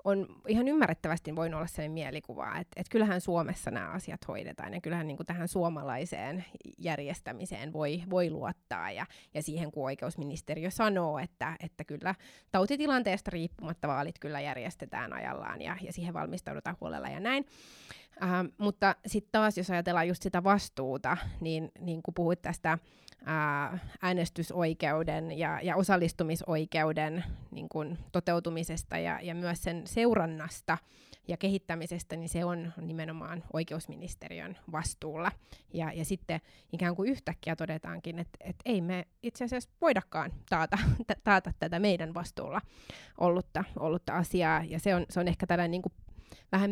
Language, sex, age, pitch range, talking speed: Finnish, female, 20-39, 160-185 Hz, 140 wpm